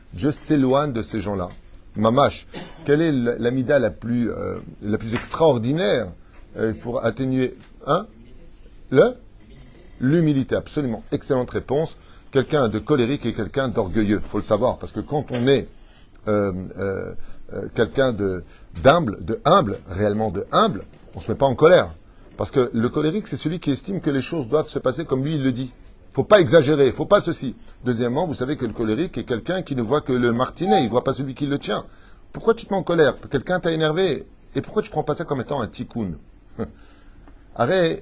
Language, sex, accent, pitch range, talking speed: French, male, French, 105-150 Hz, 195 wpm